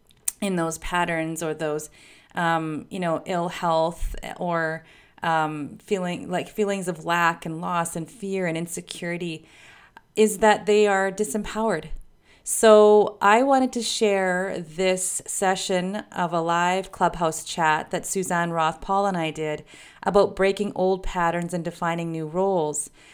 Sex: female